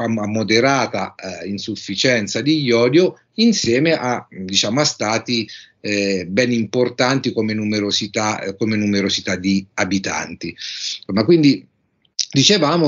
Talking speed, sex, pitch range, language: 110 wpm, male, 105-145 Hz, Italian